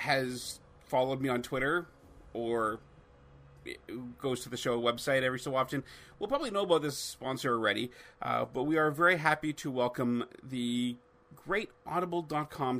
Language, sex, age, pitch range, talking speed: English, male, 40-59, 120-150 Hz, 150 wpm